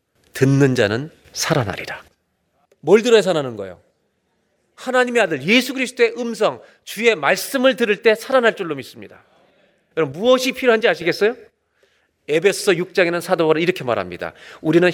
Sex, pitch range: male, 200-280 Hz